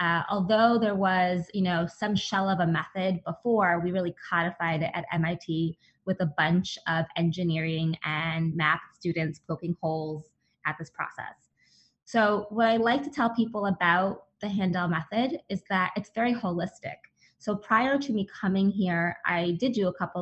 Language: English